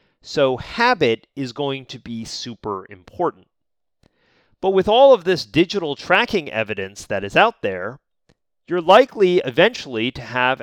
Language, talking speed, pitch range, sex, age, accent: English, 140 wpm, 115-175 Hz, male, 30-49, American